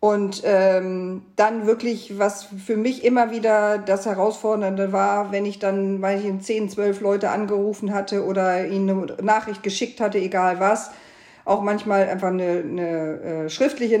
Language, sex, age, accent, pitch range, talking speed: German, female, 50-69, German, 195-230 Hz, 165 wpm